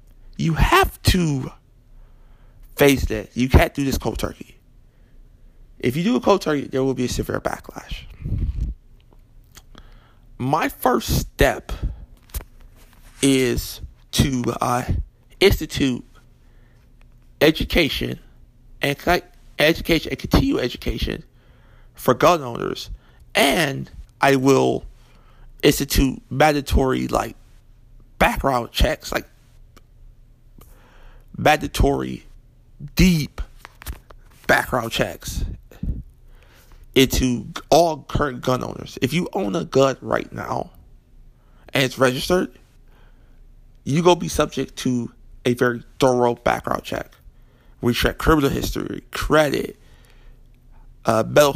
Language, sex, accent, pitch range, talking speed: English, male, American, 115-140 Hz, 95 wpm